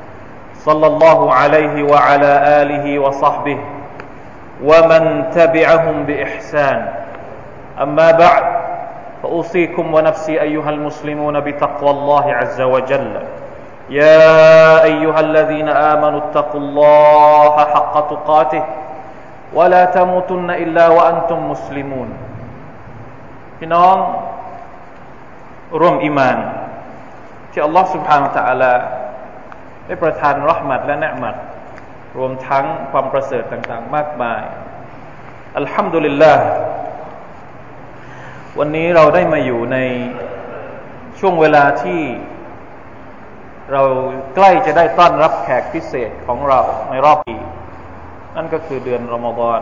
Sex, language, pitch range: male, Thai, 130-160 Hz